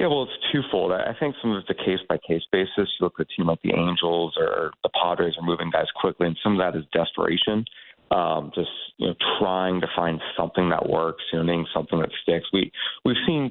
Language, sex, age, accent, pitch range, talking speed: English, male, 30-49, American, 80-95 Hz, 230 wpm